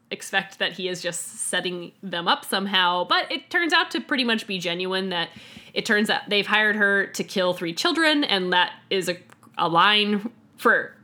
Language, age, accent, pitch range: English, 10-29, American, 180-230 Hz